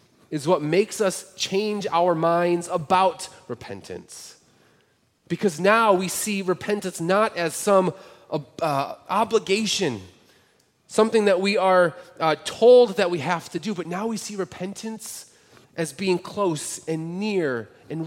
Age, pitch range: 30-49, 145-195 Hz